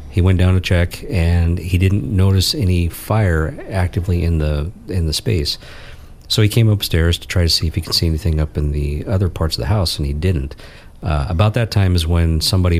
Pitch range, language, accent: 80-95 Hz, English, American